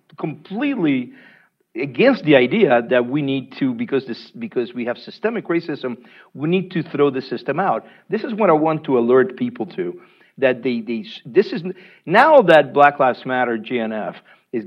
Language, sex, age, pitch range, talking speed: English, male, 50-69, 130-205 Hz, 170 wpm